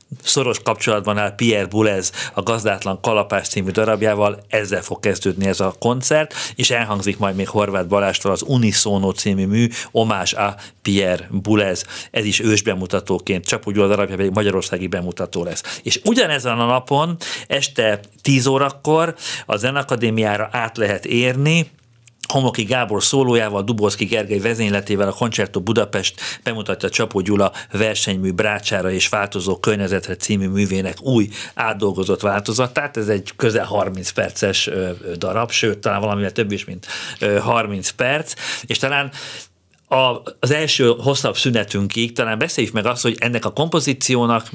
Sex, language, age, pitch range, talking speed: male, Hungarian, 50-69, 100-120 Hz, 140 wpm